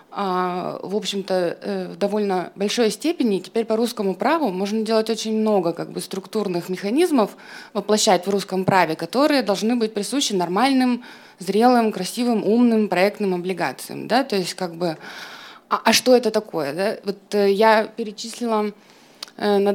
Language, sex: Russian, female